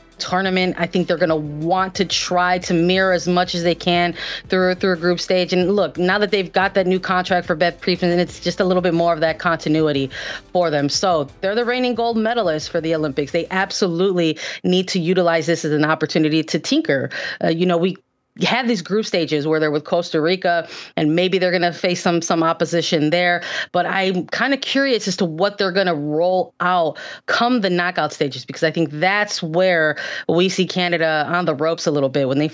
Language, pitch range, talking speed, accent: English, 160-185 Hz, 225 wpm, American